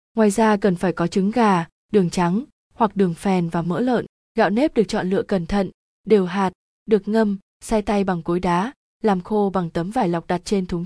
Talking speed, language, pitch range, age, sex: 220 wpm, Vietnamese, 180-225 Hz, 20-39, female